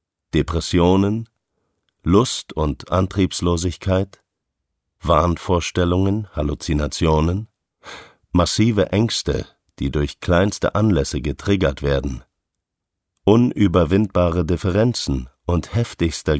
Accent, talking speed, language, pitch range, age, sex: German, 65 wpm, German, 75-100 Hz, 50-69, male